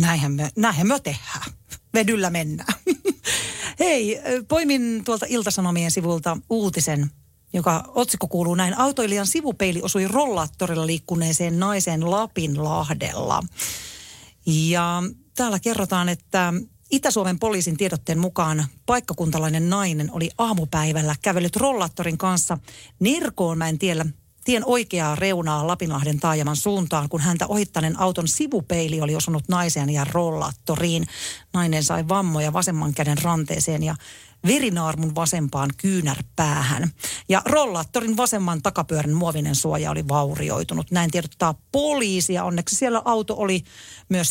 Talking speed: 110 wpm